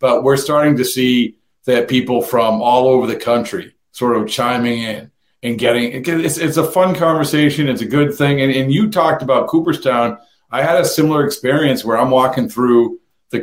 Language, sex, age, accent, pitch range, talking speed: English, male, 40-59, American, 120-155 Hz, 190 wpm